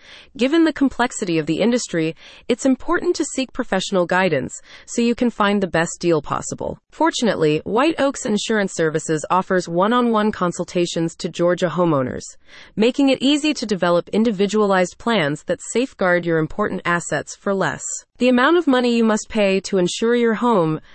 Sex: female